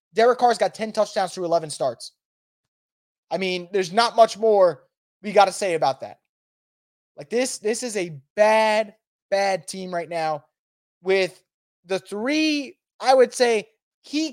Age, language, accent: 20-39, English, American